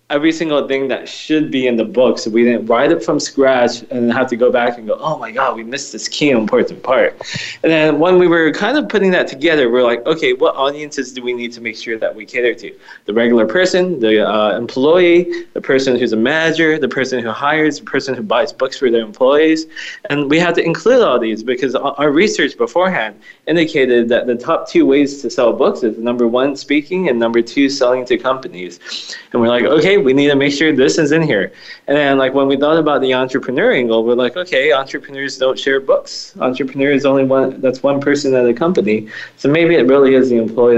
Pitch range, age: 120-155 Hz, 20-39